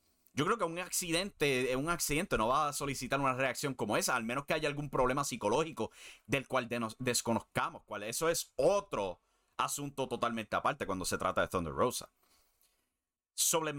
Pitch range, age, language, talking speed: 110-140 Hz, 30-49, English, 180 wpm